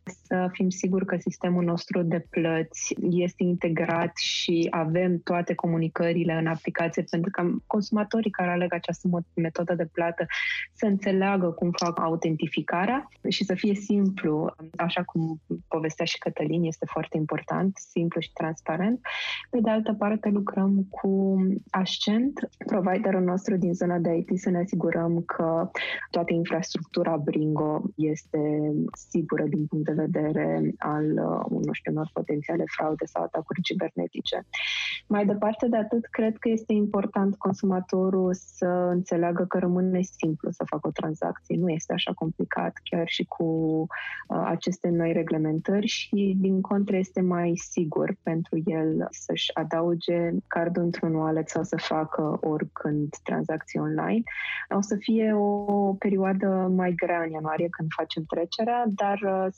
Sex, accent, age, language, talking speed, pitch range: female, Romanian, 20-39, English, 140 wpm, 165-195 Hz